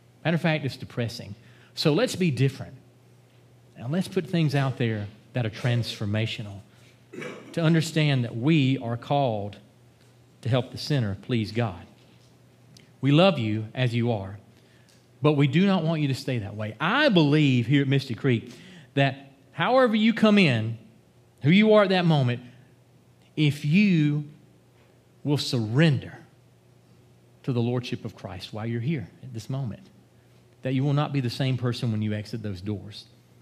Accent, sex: American, male